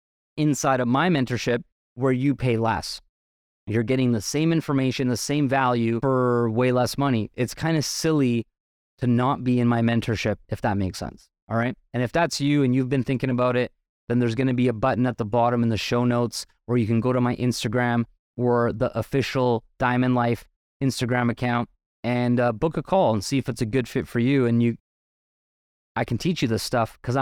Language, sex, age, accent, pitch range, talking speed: English, male, 20-39, American, 115-130 Hz, 215 wpm